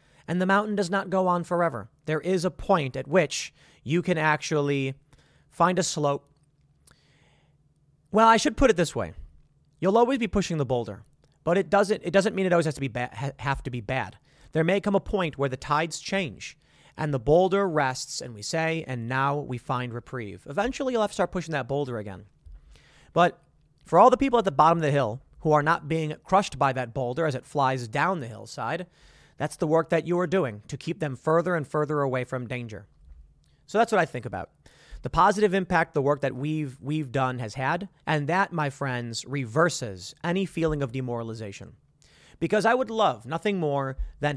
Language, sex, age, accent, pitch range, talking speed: English, male, 30-49, American, 130-175 Hz, 205 wpm